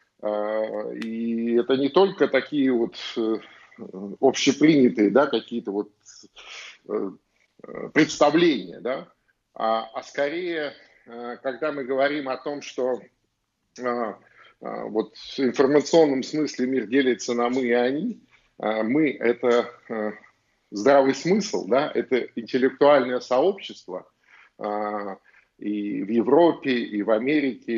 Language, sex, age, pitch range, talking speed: Russian, male, 50-69, 115-150 Hz, 95 wpm